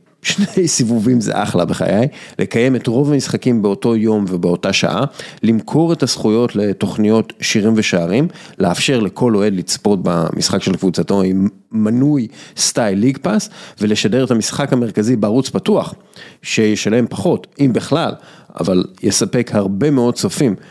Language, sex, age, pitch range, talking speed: Hebrew, male, 40-59, 100-135 Hz, 135 wpm